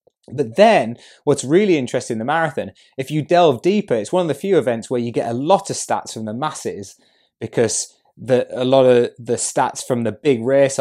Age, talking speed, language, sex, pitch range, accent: 20-39, 210 wpm, English, male, 105-140 Hz, British